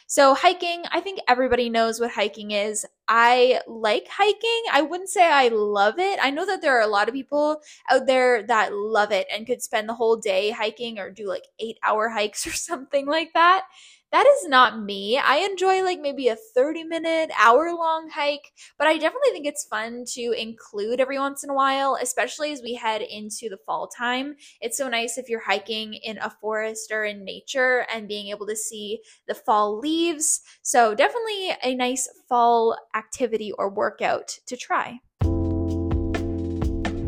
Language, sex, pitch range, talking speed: English, female, 215-295 Hz, 185 wpm